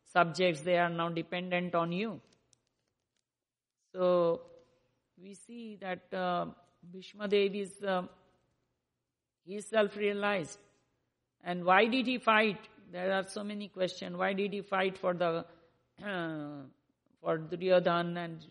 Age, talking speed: 50-69, 125 wpm